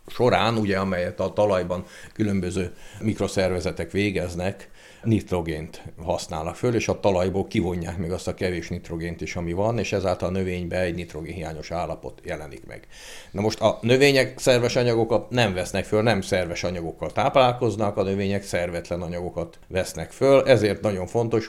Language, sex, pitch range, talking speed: Hungarian, male, 90-105 Hz, 150 wpm